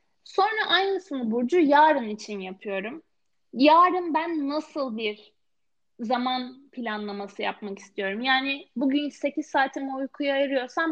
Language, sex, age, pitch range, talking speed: Turkish, female, 10-29, 245-315 Hz, 110 wpm